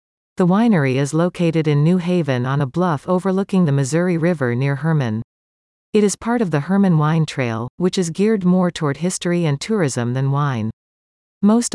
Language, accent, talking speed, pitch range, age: English, American, 180 wpm, 135-180 Hz, 40-59